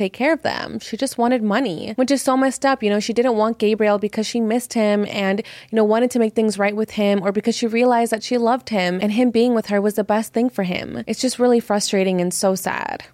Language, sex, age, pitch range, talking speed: English, female, 20-39, 195-235 Hz, 270 wpm